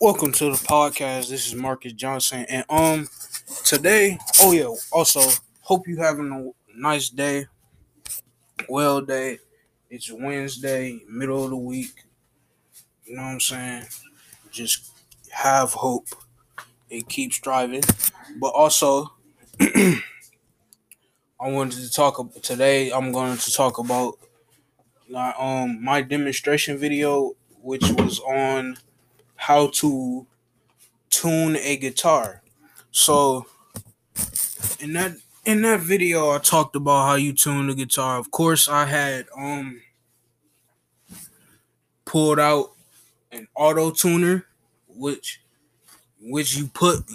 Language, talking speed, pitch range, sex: English, 120 wpm, 125-150 Hz, male